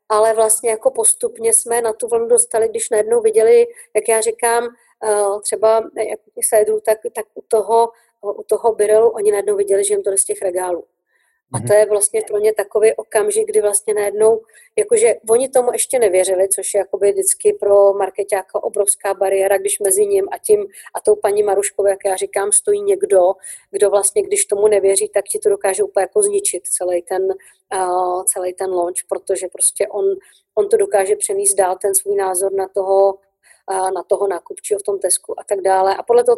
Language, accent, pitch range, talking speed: English, Czech, 200-255 Hz, 190 wpm